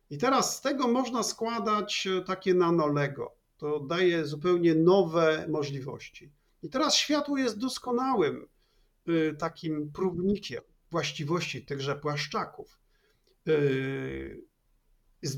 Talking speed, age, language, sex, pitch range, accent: 95 wpm, 50-69, Polish, male, 145-190 Hz, native